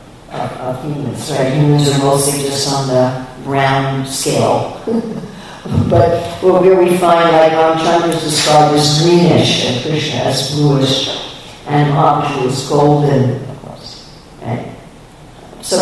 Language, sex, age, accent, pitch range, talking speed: English, female, 50-69, American, 140-170 Hz, 135 wpm